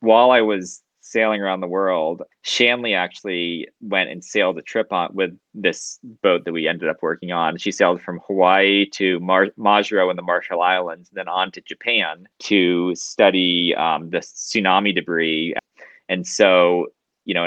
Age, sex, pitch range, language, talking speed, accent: 20-39, male, 90-105 Hz, English, 170 wpm, American